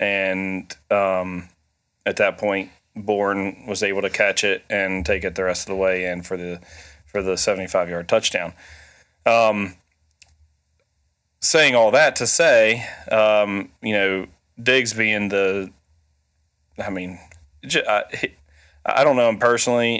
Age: 30-49